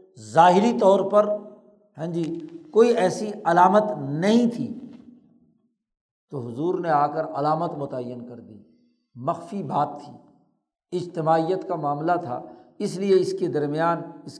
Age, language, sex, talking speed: 60-79, Urdu, male, 135 wpm